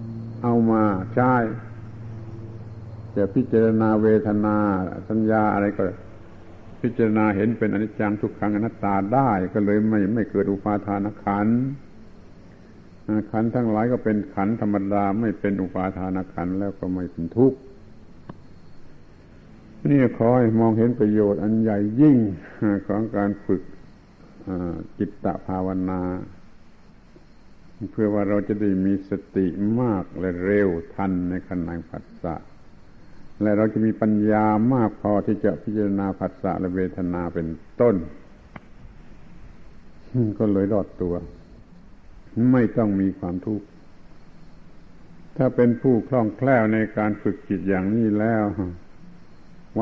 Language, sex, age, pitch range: Thai, male, 70-89, 95-110 Hz